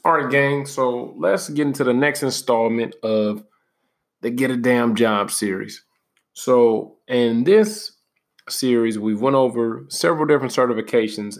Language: English